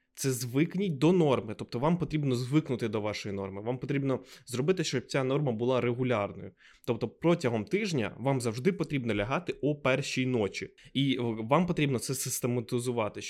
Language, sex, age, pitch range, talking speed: Ukrainian, male, 20-39, 115-150 Hz, 155 wpm